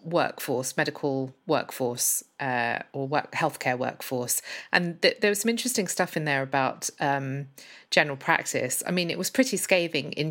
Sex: female